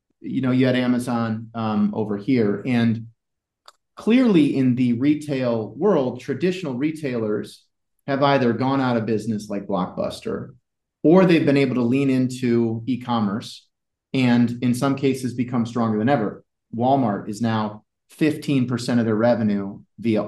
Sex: male